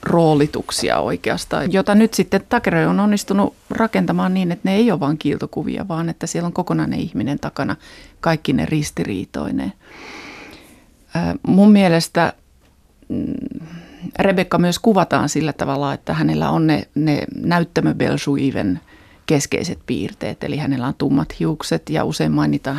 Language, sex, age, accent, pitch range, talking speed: Finnish, female, 30-49, native, 150-205 Hz, 130 wpm